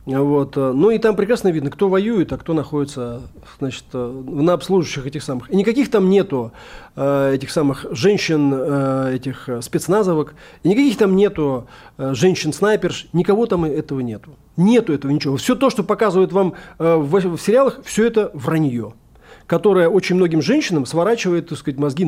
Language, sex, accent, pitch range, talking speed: Russian, male, native, 145-205 Hz, 150 wpm